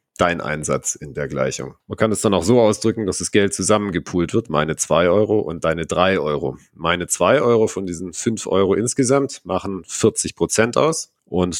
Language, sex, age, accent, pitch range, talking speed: English, male, 40-59, German, 80-105 Hz, 185 wpm